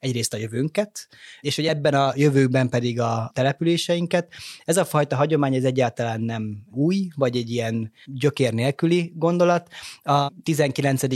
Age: 20-39